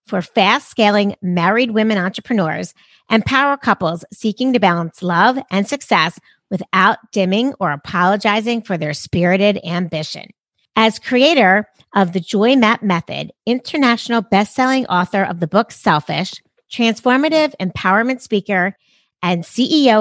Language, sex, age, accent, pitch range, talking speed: English, female, 40-59, American, 185-240 Hz, 130 wpm